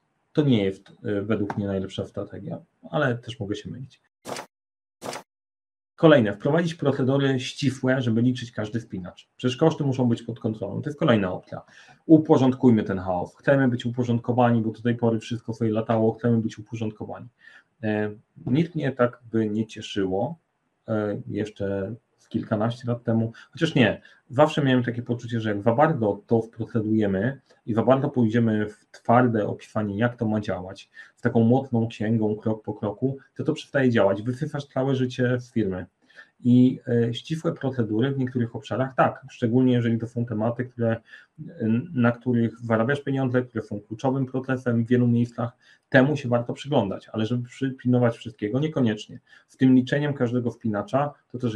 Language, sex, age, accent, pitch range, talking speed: Polish, male, 40-59, native, 110-130 Hz, 155 wpm